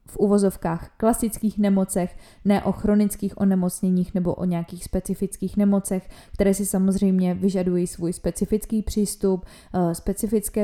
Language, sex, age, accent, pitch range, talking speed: Czech, female, 20-39, native, 180-205 Hz, 120 wpm